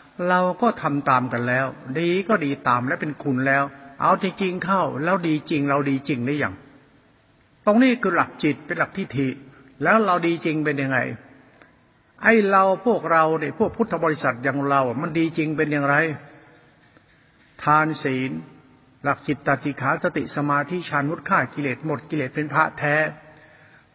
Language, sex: Thai, male